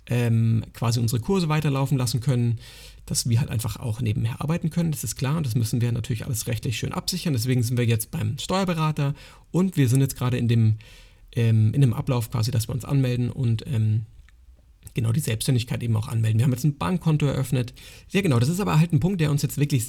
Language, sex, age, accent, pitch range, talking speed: German, male, 40-59, German, 120-150 Hz, 225 wpm